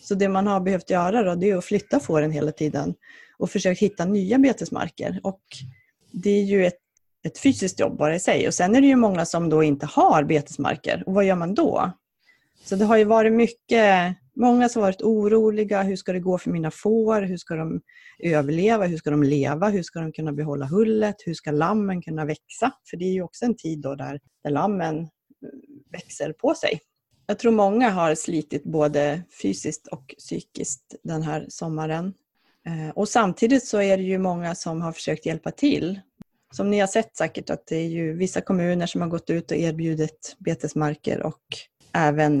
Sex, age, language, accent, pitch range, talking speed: female, 30-49, Swedish, native, 155-205 Hz, 195 wpm